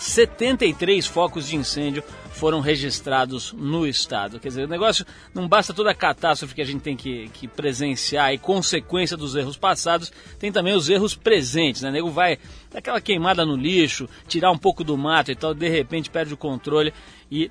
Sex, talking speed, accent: male, 190 wpm, Brazilian